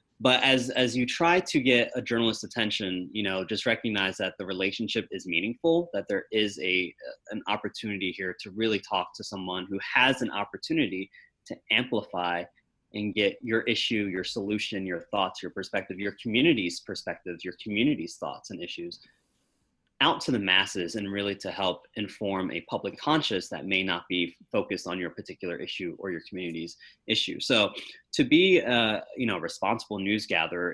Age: 20-39